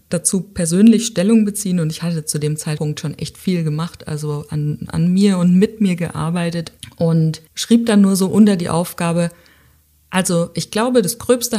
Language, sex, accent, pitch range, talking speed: German, female, German, 160-200 Hz, 180 wpm